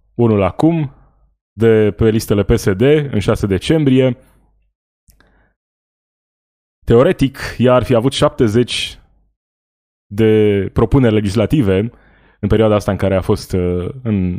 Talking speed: 110 wpm